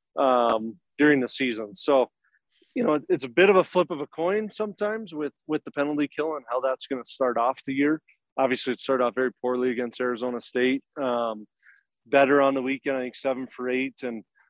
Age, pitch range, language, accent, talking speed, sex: 20-39, 120-135 Hz, English, American, 210 wpm, male